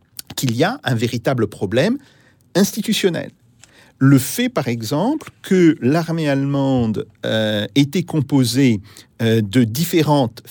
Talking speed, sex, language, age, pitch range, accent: 115 wpm, male, French, 50-69, 120-180 Hz, French